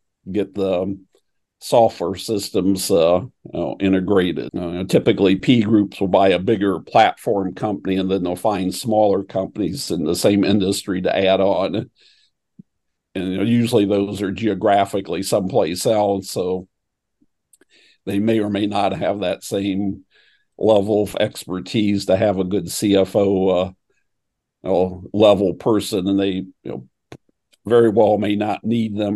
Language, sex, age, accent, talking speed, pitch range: English, male, 50-69, American, 135 wpm, 95-105 Hz